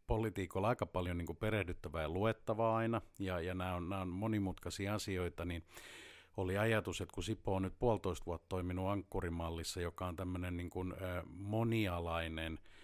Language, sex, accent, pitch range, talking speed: Finnish, male, native, 85-100 Hz, 165 wpm